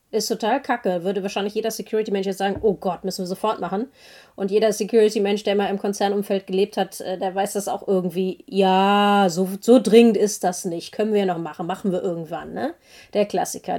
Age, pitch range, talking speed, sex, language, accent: 30-49, 185-220 Hz, 200 wpm, female, German, German